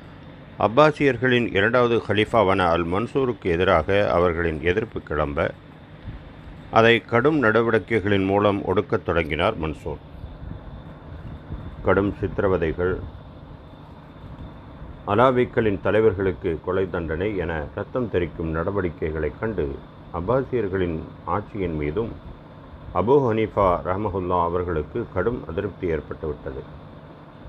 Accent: native